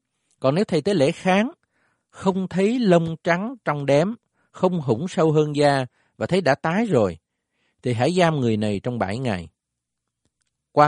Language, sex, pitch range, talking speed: Vietnamese, male, 115-165 Hz, 170 wpm